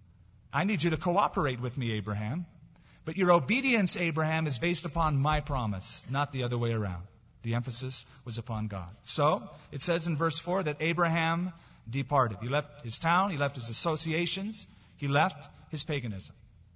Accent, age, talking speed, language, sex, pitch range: American, 40-59, 170 wpm, English, male, 120-170 Hz